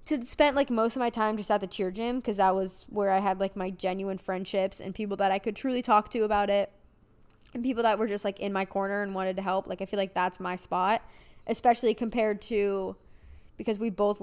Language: English